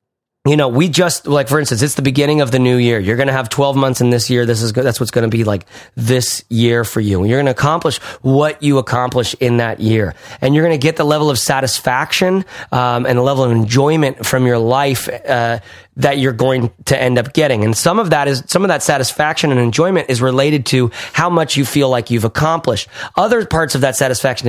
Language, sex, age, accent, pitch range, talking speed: English, male, 30-49, American, 130-165 Hz, 240 wpm